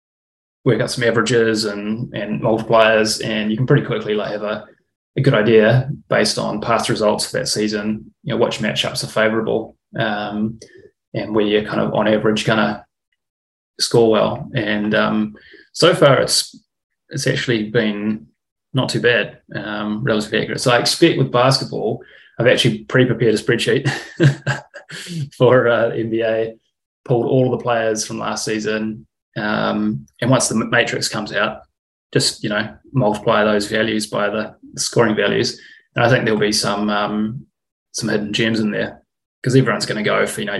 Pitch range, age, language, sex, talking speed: 105-120 Hz, 20-39, English, male, 170 wpm